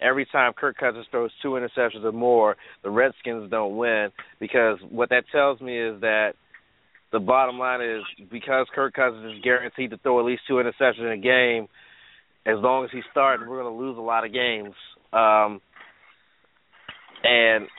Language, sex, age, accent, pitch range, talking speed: English, male, 30-49, American, 120-160 Hz, 180 wpm